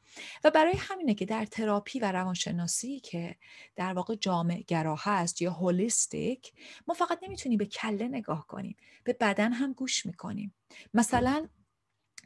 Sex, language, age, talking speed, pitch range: female, Persian, 30-49, 140 wpm, 185-245 Hz